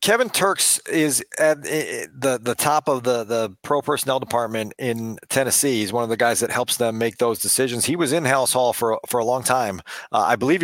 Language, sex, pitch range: English, male, 120-140 Hz